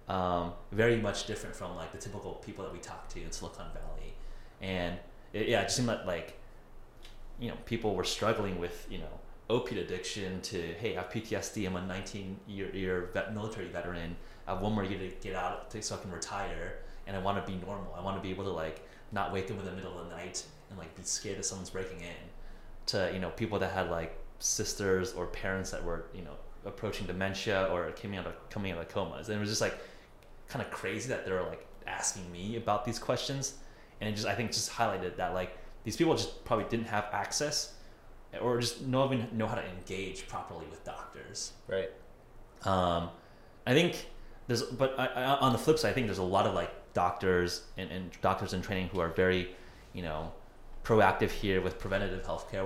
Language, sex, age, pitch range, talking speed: English, male, 30-49, 90-110 Hz, 215 wpm